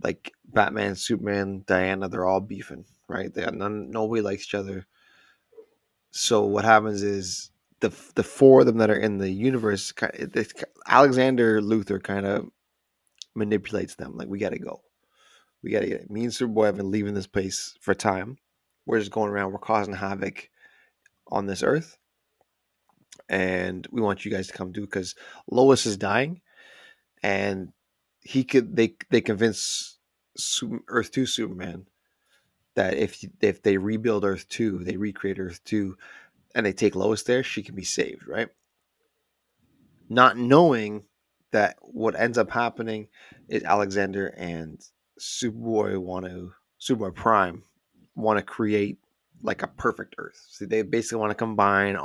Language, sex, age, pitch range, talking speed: English, male, 20-39, 95-115 Hz, 155 wpm